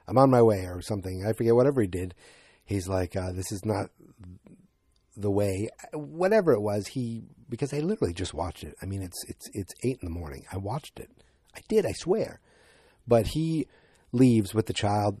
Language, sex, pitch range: English, male, 95-125 Hz